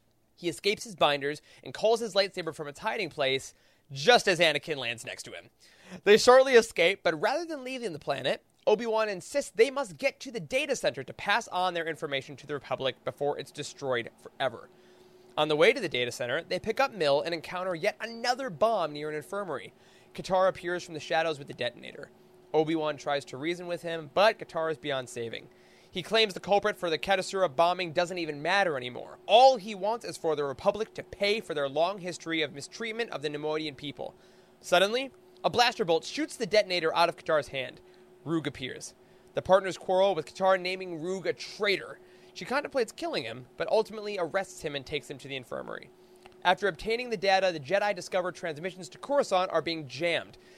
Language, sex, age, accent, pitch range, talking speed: English, male, 20-39, American, 155-205 Hz, 200 wpm